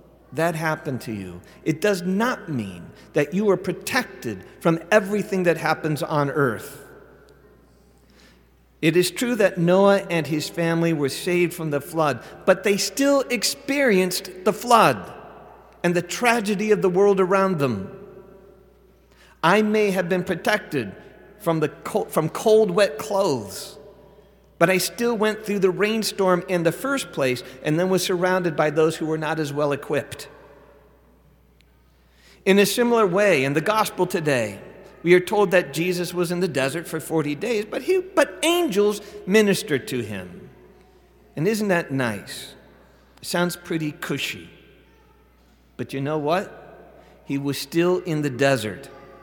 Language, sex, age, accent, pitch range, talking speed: English, male, 50-69, American, 150-200 Hz, 150 wpm